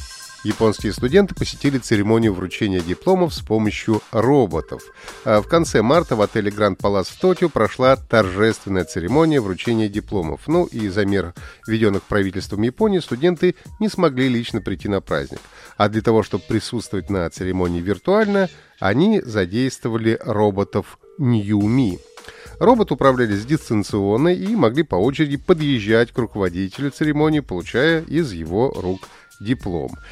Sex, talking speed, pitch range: male, 130 wpm, 100-145 Hz